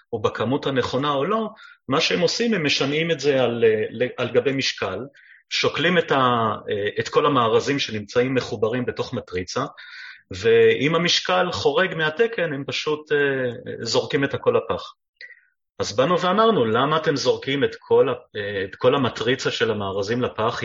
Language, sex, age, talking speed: Hebrew, male, 30-49, 145 wpm